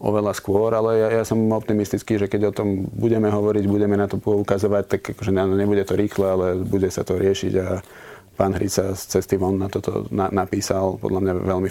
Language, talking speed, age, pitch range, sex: Slovak, 205 wpm, 30-49, 95-110 Hz, male